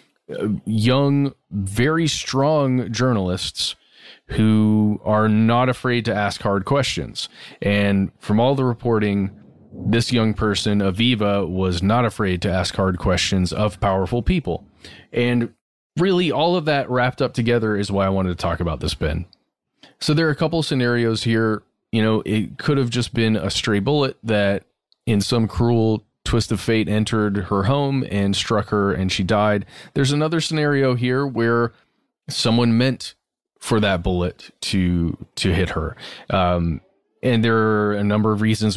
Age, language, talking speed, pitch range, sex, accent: 30-49, English, 160 wpm, 100-130 Hz, male, American